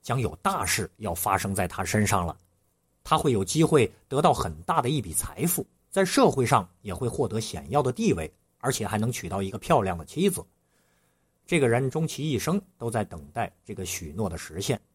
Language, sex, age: Chinese, male, 50-69